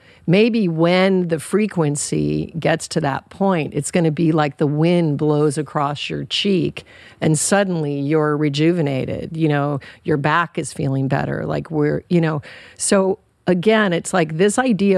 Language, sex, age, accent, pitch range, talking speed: English, female, 50-69, American, 140-175 Hz, 155 wpm